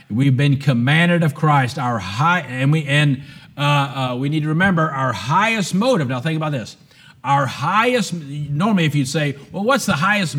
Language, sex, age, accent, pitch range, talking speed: English, male, 50-69, American, 140-175 Hz, 190 wpm